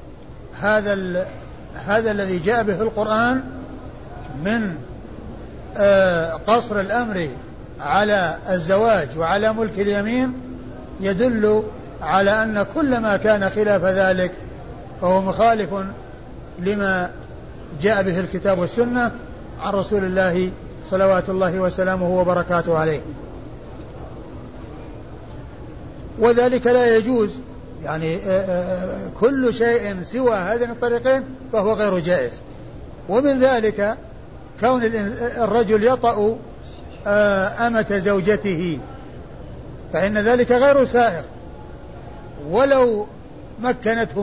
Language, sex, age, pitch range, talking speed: Arabic, male, 60-79, 190-235 Hz, 85 wpm